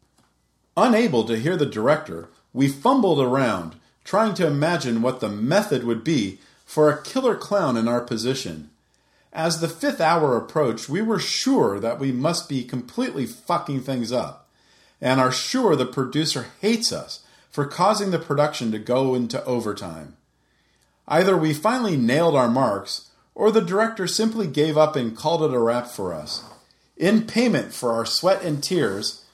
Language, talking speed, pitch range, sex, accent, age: English, 165 wpm, 115-190 Hz, male, American, 40-59